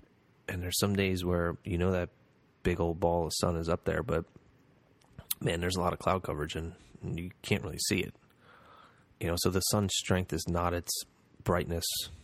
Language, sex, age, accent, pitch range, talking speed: English, male, 30-49, American, 85-95 Hz, 190 wpm